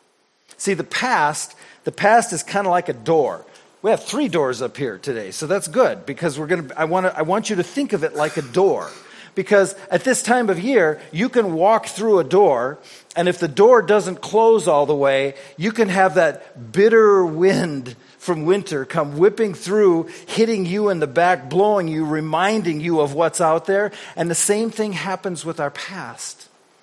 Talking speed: 200 wpm